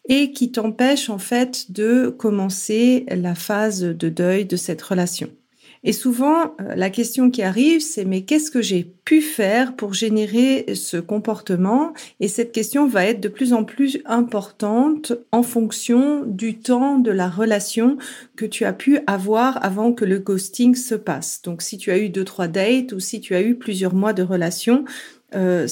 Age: 40-59